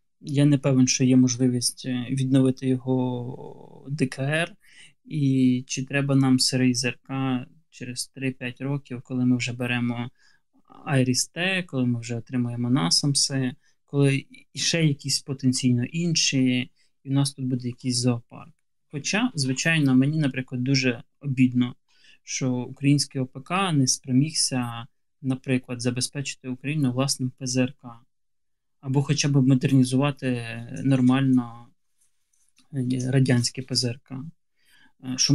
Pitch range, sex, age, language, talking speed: 125-140 Hz, male, 20-39, Ukrainian, 110 wpm